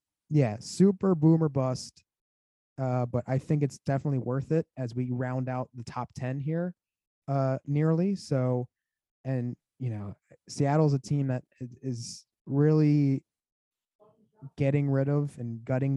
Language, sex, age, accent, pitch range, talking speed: English, male, 20-39, American, 125-150 Hz, 140 wpm